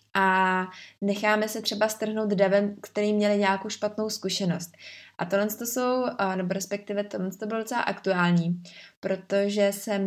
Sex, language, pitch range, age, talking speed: female, Czech, 190-215 Hz, 20-39, 145 wpm